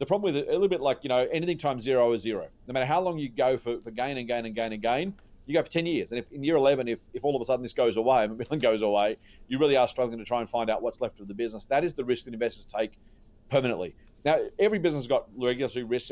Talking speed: 300 wpm